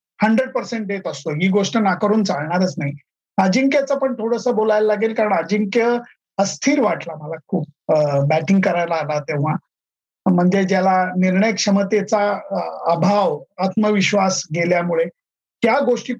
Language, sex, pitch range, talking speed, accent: Marathi, male, 175-215 Hz, 125 wpm, native